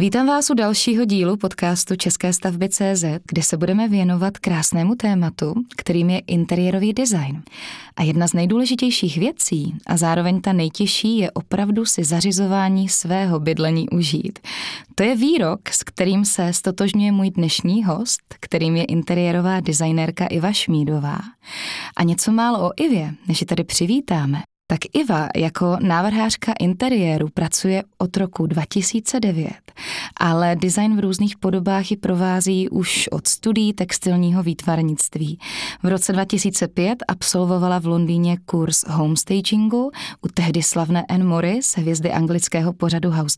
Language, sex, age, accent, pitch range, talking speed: Czech, female, 20-39, native, 170-210 Hz, 135 wpm